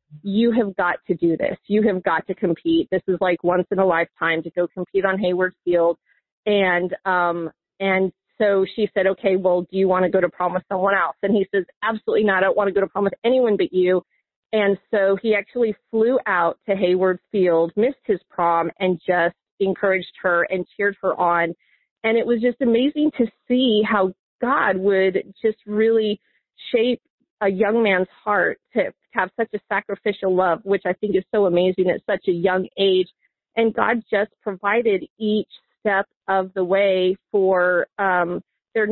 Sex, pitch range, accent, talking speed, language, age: female, 185-215 Hz, American, 195 wpm, English, 40-59